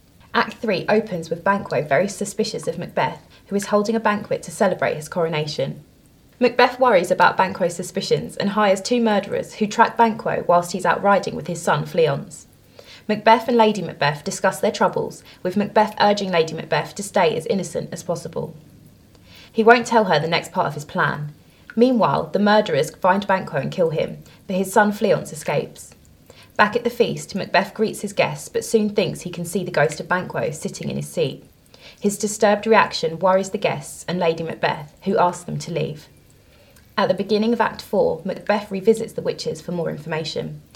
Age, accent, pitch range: 20-39, British, 170-215 Hz